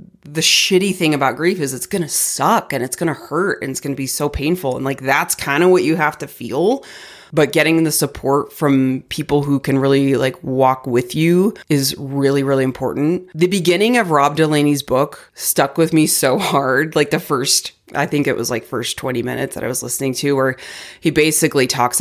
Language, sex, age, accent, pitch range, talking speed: English, female, 30-49, American, 130-155 Hz, 220 wpm